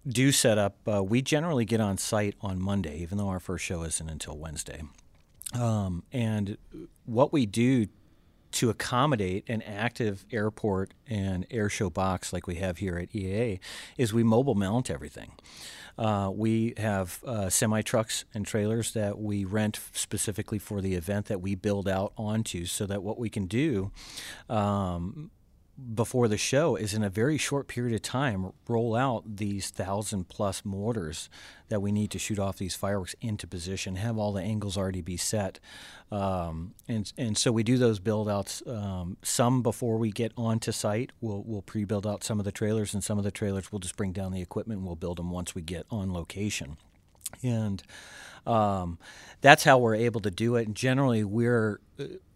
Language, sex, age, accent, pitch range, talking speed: English, male, 40-59, American, 95-115 Hz, 185 wpm